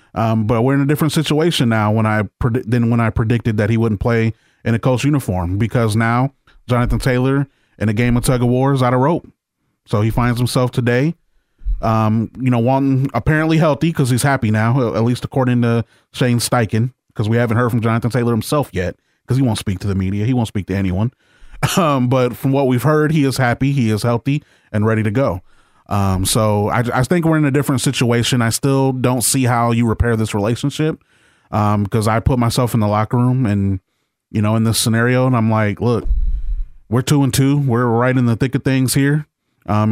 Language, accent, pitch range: English, American, 110-135 Hz